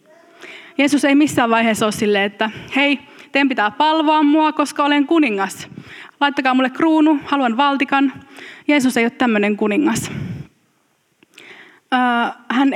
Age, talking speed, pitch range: 20-39, 120 wpm, 215-295 Hz